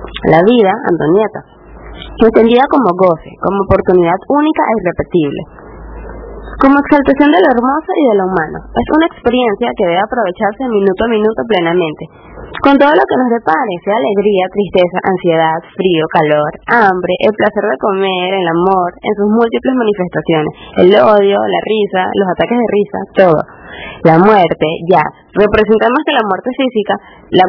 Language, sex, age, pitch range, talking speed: Spanish, female, 20-39, 185-235 Hz, 155 wpm